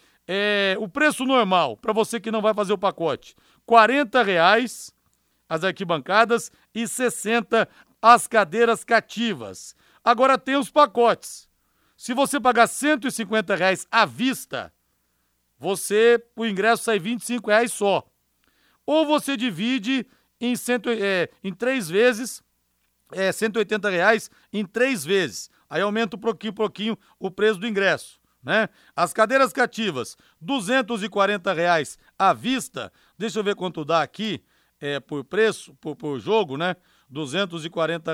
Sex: male